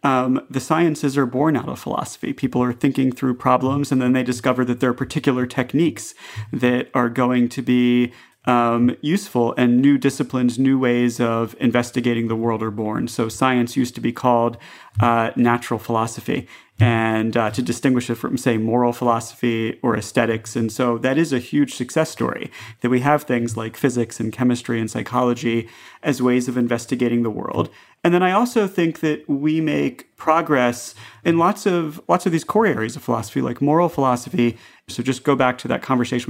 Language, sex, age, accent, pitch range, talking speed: English, male, 30-49, American, 115-135 Hz, 185 wpm